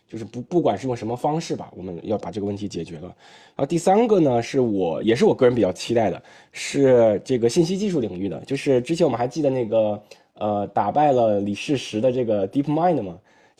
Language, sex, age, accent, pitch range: Chinese, male, 20-39, native, 110-150 Hz